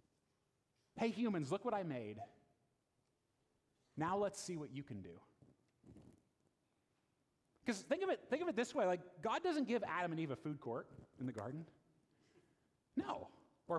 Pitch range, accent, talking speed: 145-235 Hz, American, 150 wpm